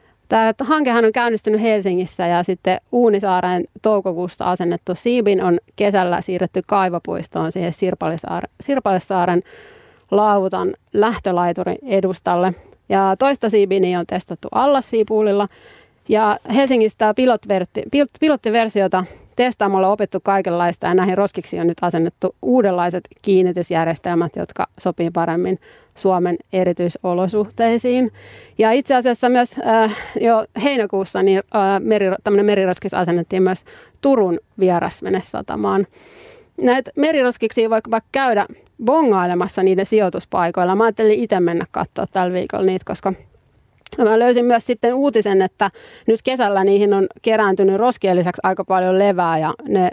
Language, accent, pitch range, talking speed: Finnish, native, 180-225 Hz, 115 wpm